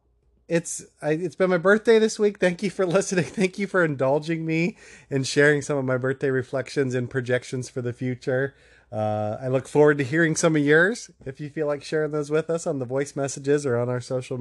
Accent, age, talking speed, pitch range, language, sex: American, 30-49, 230 wpm, 125-170 Hz, English, male